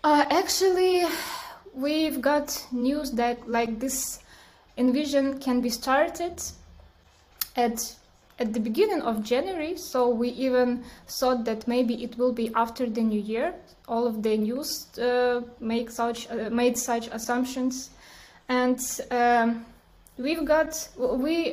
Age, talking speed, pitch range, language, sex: 10-29, 130 wpm, 235-290 Hz, English, female